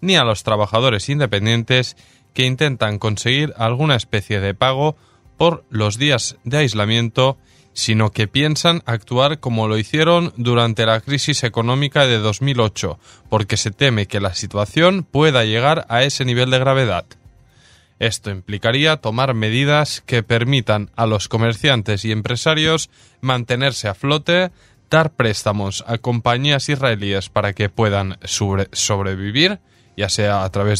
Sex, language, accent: male, Spanish, Spanish